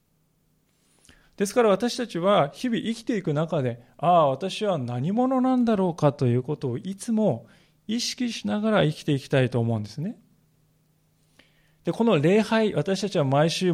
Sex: male